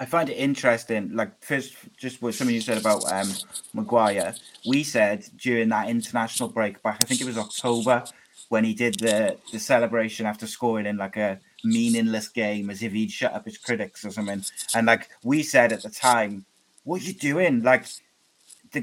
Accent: British